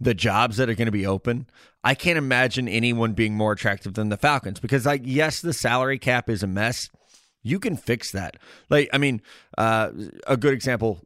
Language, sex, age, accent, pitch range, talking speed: English, male, 20-39, American, 110-140 Hz, 205 wpm